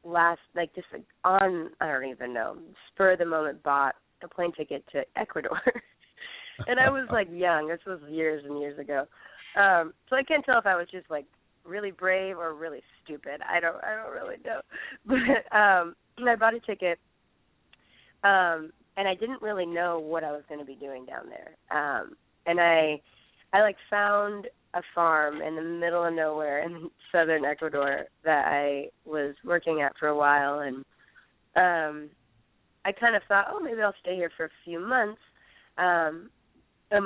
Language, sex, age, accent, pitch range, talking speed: English, female, 20-39, American, 150-195 Hz, 180 wpm